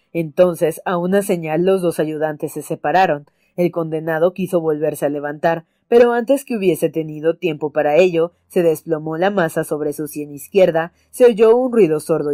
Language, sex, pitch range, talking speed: Spanish, female, 155-185 Hz, 175 wpm